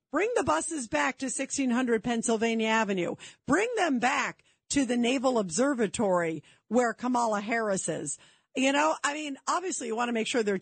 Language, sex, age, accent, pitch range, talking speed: English, female, 50-69, American, 225-295 Hz, 170 wpm